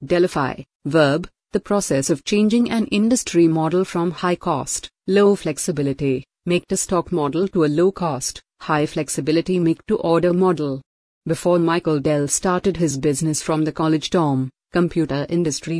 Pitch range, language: 155-190 Hz, English